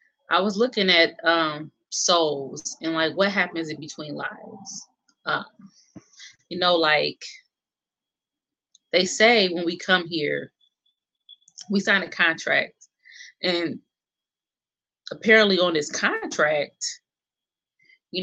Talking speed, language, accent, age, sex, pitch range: 110 wpm, English, American, 30-49, female, 165-195 Hz